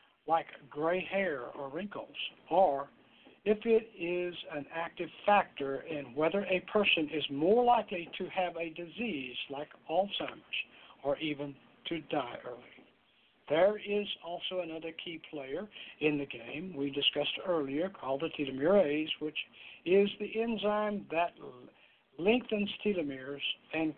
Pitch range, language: 150-200 Hz, English